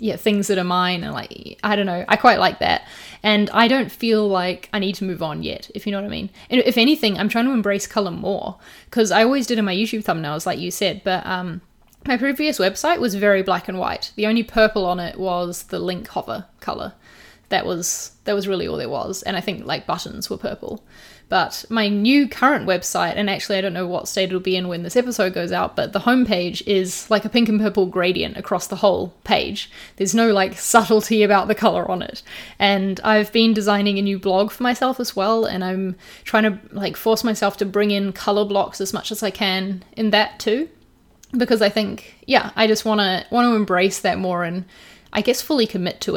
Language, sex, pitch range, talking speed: English, female, 190-220 Hz, 230 wpm